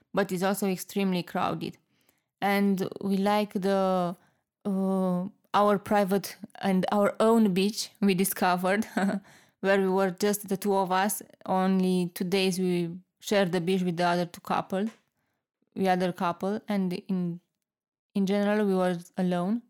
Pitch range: 185-210 Hz